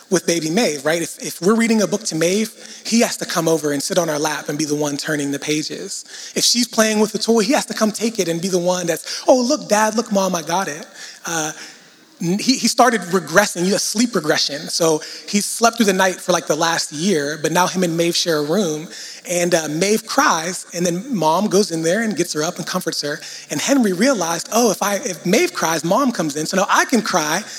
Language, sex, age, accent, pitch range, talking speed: English, male, 30-49, American, 170-230 Hz, 250 wpm